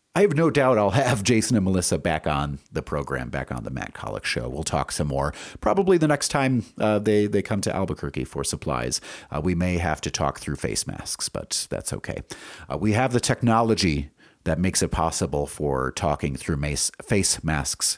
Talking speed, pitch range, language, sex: 205 wpm, 80-110 Hz, English, male